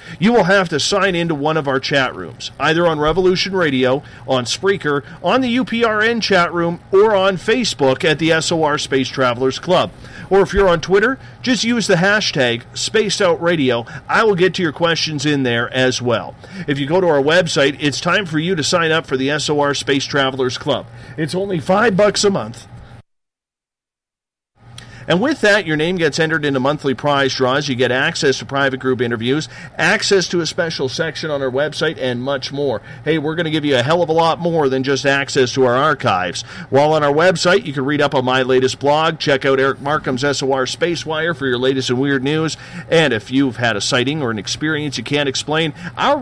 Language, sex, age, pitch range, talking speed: English, male, 40-59, 130-170 Hz, 210 wpm